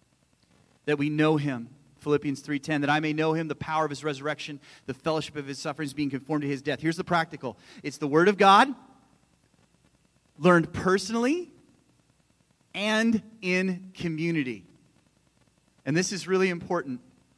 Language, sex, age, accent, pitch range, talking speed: English, male, 30-49, American, 145-175 Hz, 150 wpm